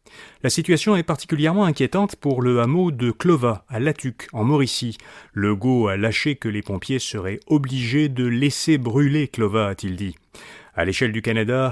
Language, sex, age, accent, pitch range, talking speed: French, male, 40-59, French, 105-150 Hz, 170 wpm